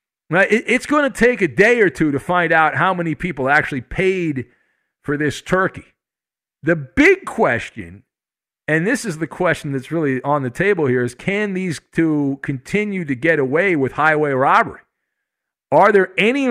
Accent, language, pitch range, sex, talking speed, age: American, English, 150-215 Hz, male, 170 wpm, 50-69